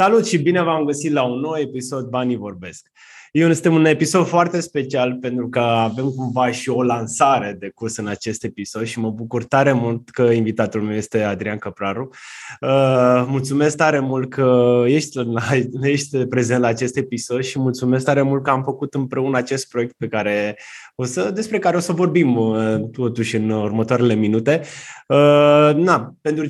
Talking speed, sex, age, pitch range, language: 170 wpm, male, 20-39, 120-155 Hz, Romanian